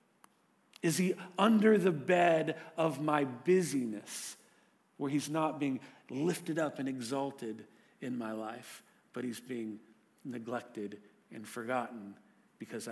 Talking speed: 120 wpm